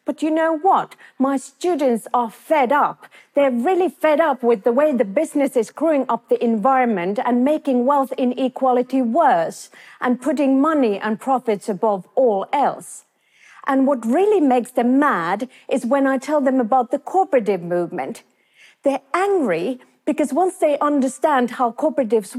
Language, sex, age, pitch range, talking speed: Portuguese, female, 40-59, 235-310 Hz, 160 wpm